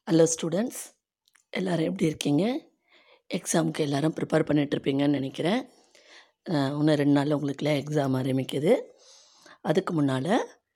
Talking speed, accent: 105 wpm, native